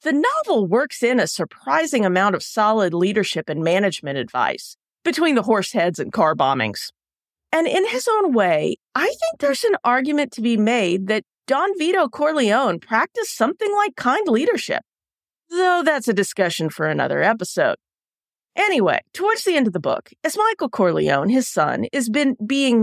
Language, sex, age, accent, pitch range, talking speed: English, female, 40-59, American, 180-295 Hz, 165 wpm